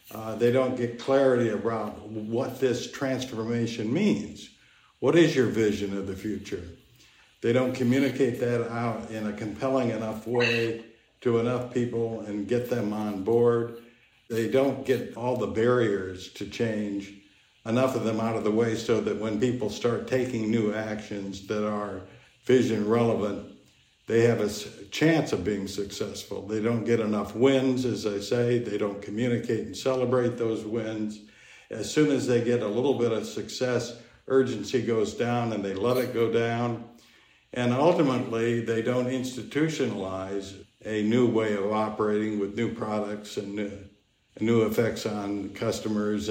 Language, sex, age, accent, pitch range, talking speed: English, male, 60-79, American, 105-120 Hz, 155 wpm